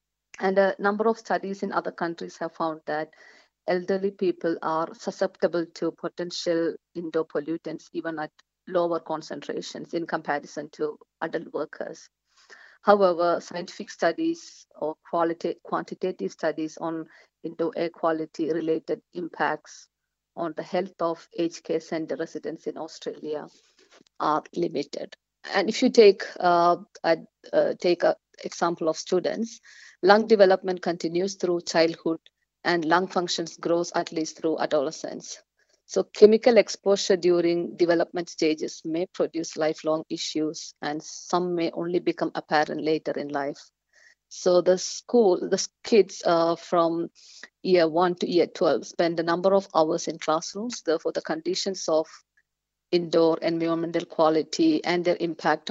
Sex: female